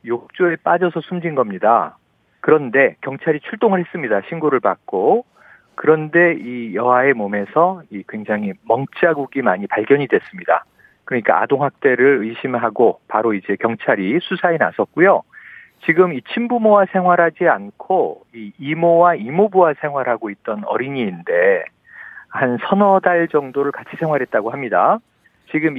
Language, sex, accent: Korean, male, native